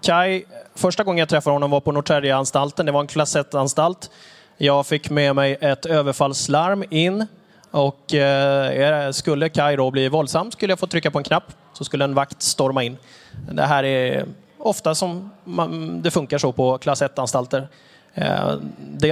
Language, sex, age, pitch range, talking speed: Swedish, male, 20-39, 135-165 Hz, 160 wpm